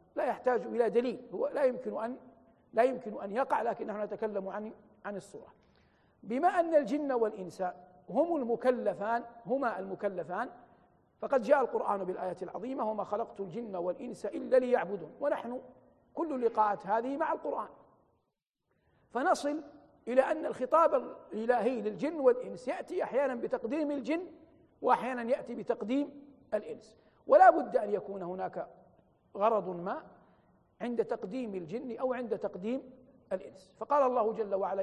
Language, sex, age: Arabic, male, 50-69